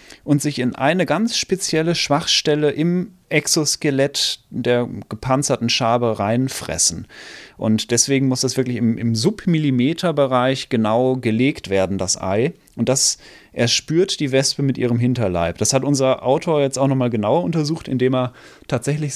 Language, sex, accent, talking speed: German, male, German, 145 wpm